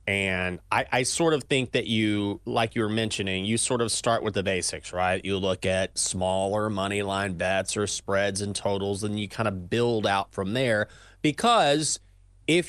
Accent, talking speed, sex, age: American, 195 wpm, male, 30-49